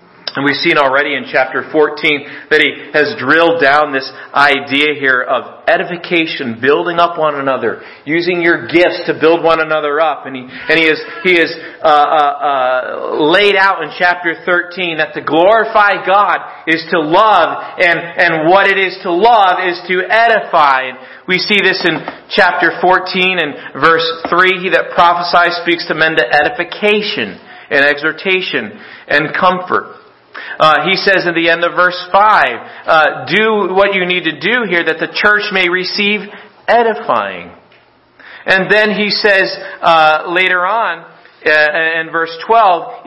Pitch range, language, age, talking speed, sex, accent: 160-200 Hz, English, 40-59, 165 wpm, male, American